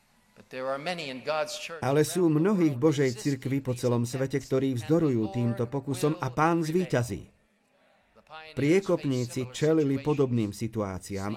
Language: Slovak